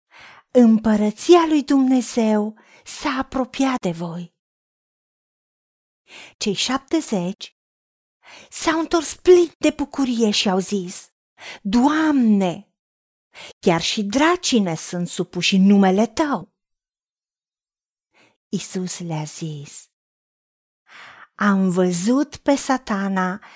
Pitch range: 200-295 Hz